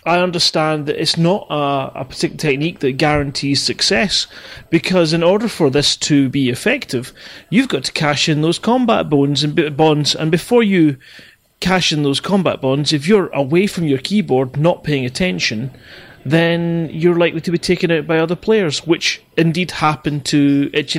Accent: British